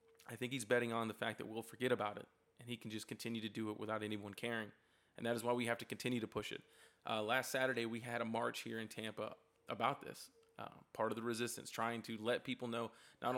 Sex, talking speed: male, 255 wpm